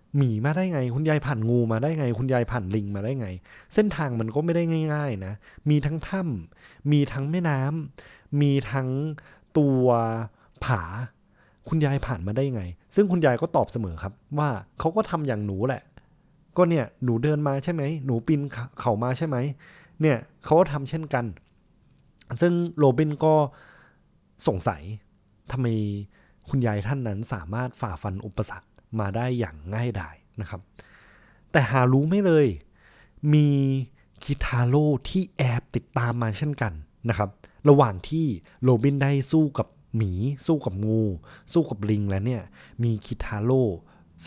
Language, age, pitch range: Thai, 20-39, 105-145 Hz